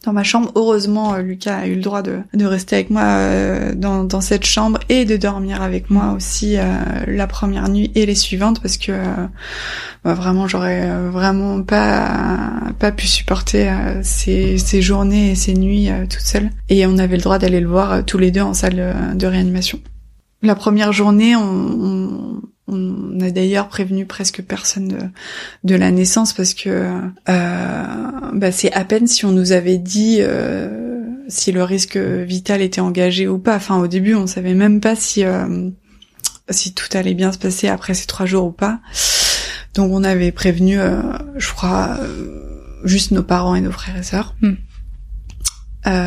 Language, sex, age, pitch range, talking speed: French, female, 20-39, 185-205 Hz, 190 wpm